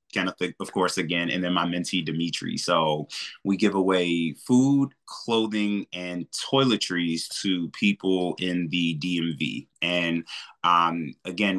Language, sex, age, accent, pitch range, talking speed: English, male, 30-49, American, 85-95 Hz, 130 wpm